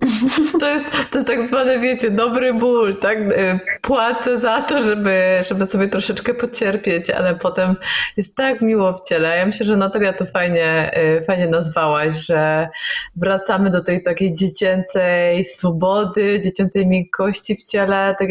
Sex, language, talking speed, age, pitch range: female, Polish, 150 wpm, 20-39, 180-225 Hz